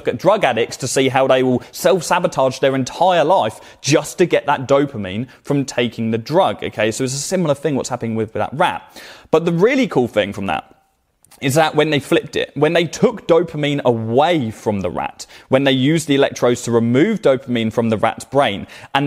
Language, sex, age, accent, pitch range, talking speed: English, male, 20-39, British, 115-150 Hz, 210 wpm